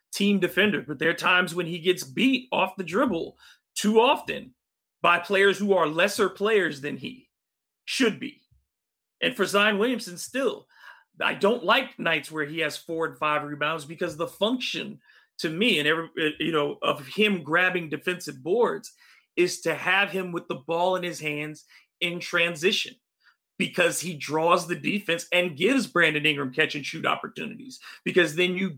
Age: 30-49